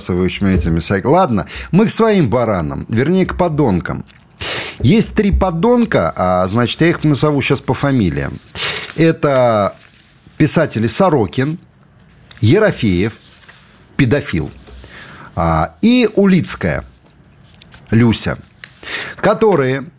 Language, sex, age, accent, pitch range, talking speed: Russian, male, 50-69, native, 110-165 Hz, 80 wpm